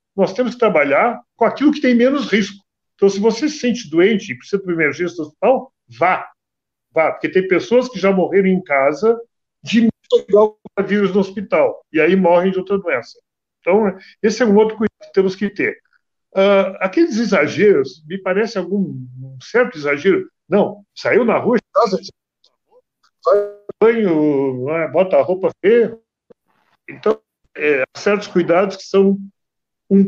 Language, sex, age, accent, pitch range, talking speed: Portuguese, male, 60-79, Brazilian, 175-240 Hz, 160 wpm